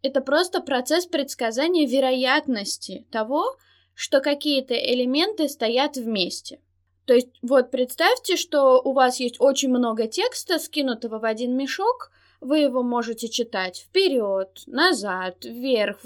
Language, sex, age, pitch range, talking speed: Russian, female, 20-39, 225-300 Hz, 125 wpm